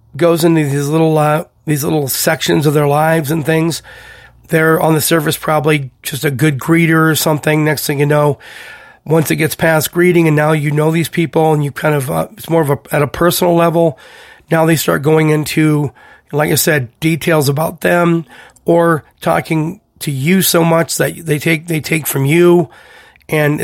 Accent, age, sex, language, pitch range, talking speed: American, 40-59, male, English, 145-165 Hz, 195 wpm